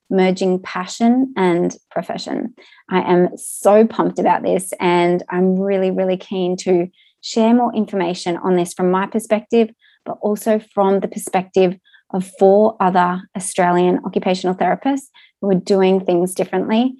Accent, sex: Australian, female